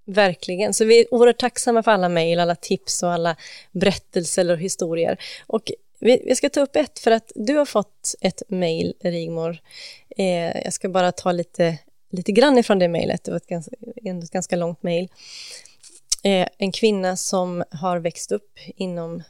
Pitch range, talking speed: 175-215 Hz, 175 wpm